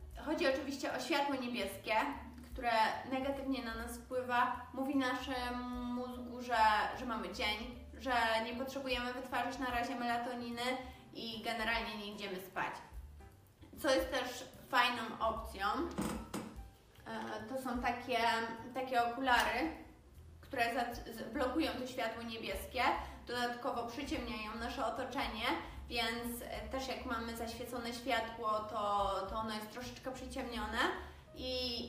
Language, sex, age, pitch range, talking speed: Polish, female, 20-39, 210-260 Hz, 115 wpm